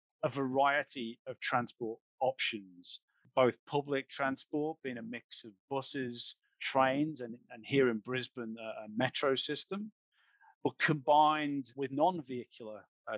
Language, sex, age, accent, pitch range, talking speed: English, male, 40-59, British, 115-140 Hz, 125 wpm